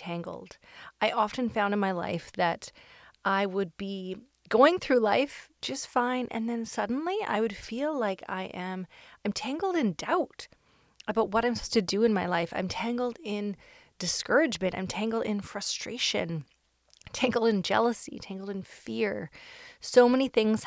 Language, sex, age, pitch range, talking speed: English, female, 30-49, 185-230 Hz, 160 wpm